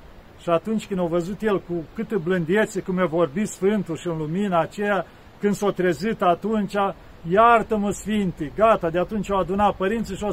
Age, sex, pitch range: 40-59, male, 165-215 Hz